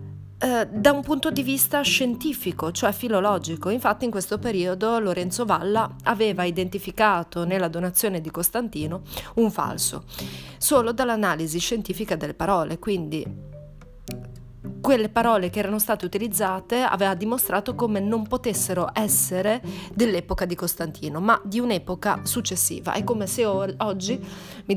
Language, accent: Italian, native